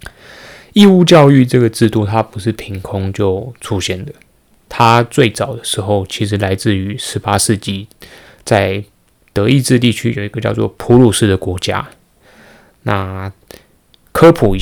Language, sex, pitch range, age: Chinese, male, 100-125 Hz, 20-39